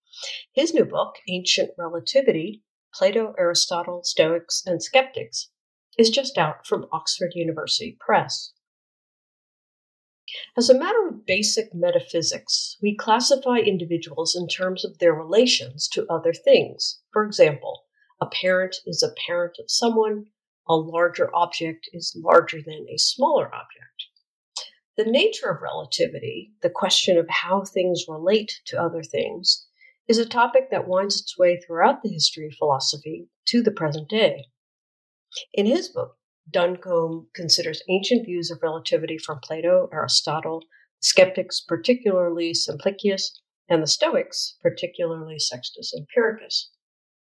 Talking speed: 130 wpm